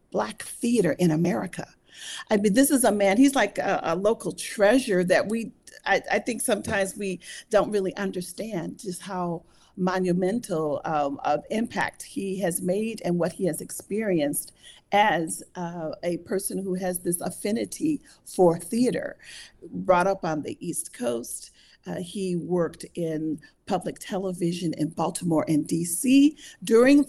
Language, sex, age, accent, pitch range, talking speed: English, female, 40-59, American, 170-215 Hz, 150 wpm